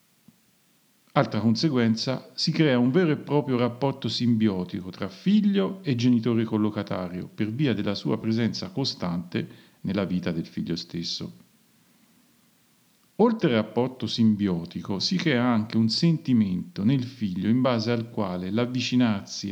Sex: male